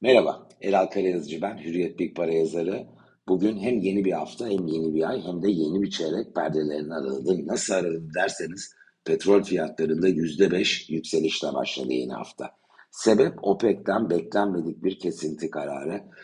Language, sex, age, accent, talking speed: Turkish, male, 60-79, native, 150 wpm